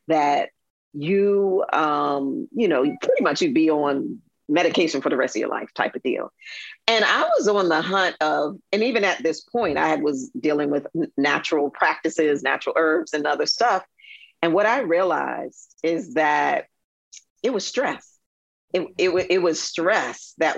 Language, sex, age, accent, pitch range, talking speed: English, female, 40-59, American, 150-195 Hz, 170 wpm